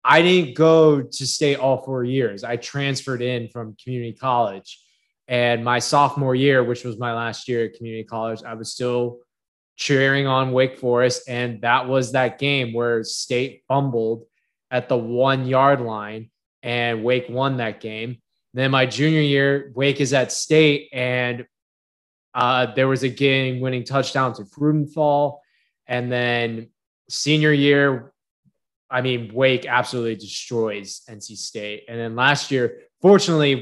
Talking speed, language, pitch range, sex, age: 155 wpm, English, 120-140 Hz, male, 20-39